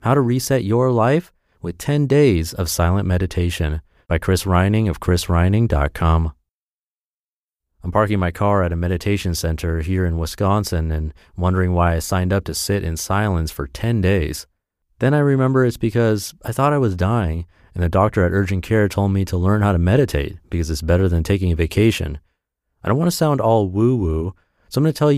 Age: 30-49